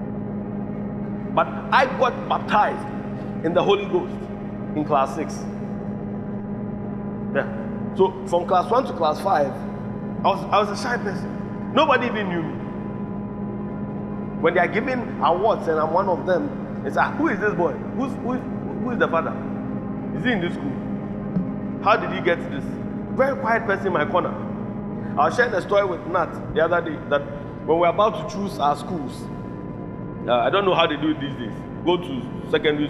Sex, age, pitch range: male, 30-49, 150-200 Hz